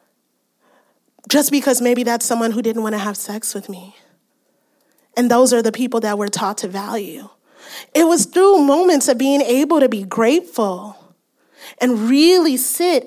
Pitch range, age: 245-315 Hz, 30-49